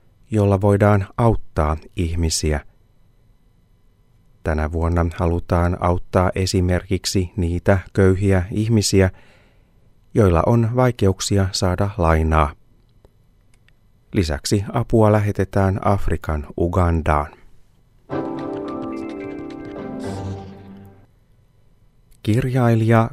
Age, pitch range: 30-49, 85-110 Hz